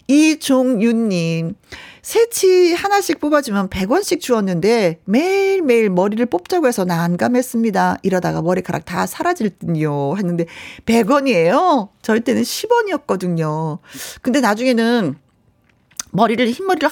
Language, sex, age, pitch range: Korean, female, 40-59, 180-280 Hz